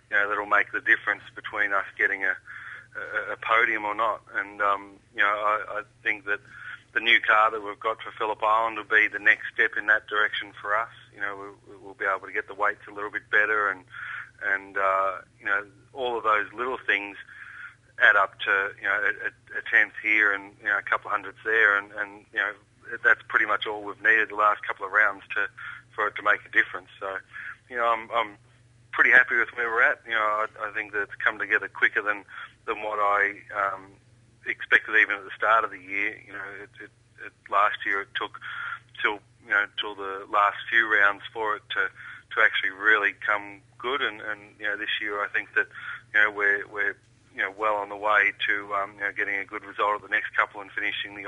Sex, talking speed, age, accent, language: male, 230 wpm, 40-59, Australian, English